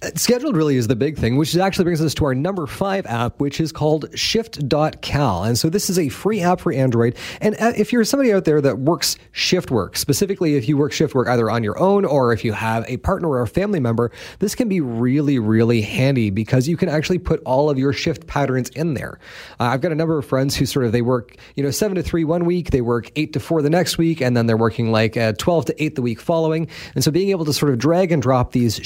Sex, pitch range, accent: male, 120-165 Hz, American